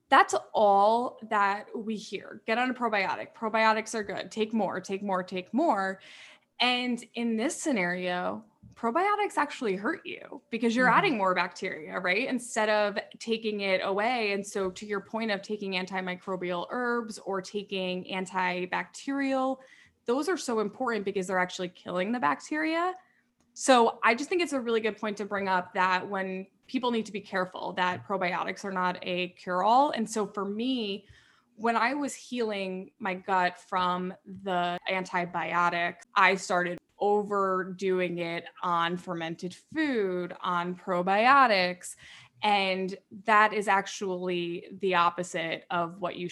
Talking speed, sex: 150 wpm, female